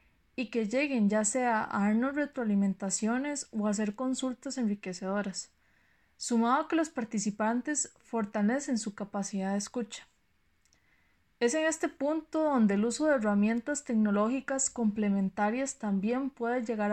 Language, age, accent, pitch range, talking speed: Spanish, 20-39, Colombian, 205-260 Hz, 130 wpm